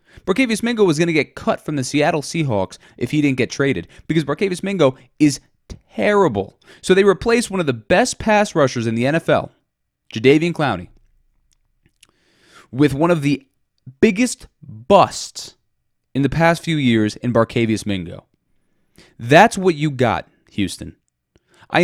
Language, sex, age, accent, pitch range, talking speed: English, male, 20-39, American, 105-155 Hz, 150 wpm